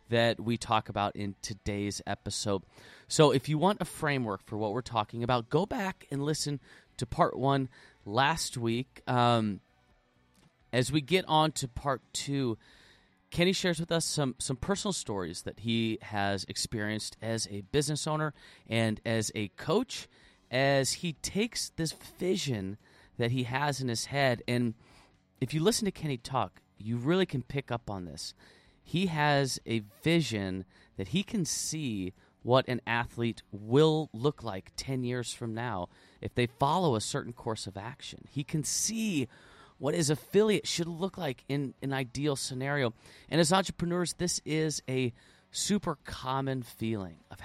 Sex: male